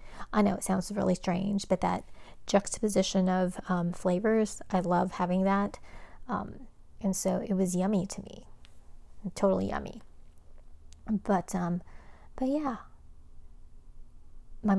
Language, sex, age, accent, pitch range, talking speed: English, female, 30-49, American, 180-205 Hz, 125 wpm